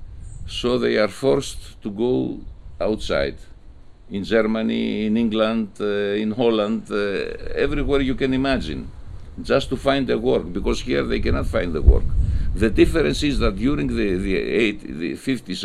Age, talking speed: 60-79, 155 wpm